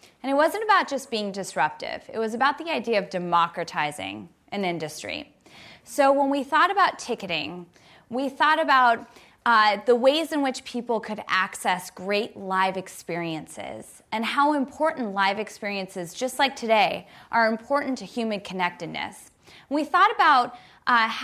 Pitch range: 180-245 Hz